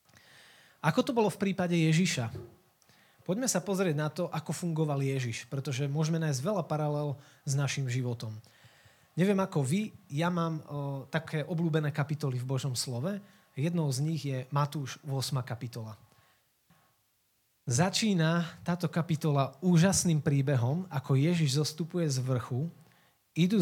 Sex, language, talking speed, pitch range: male, Slovak, 130 wpm, 130-165 Hz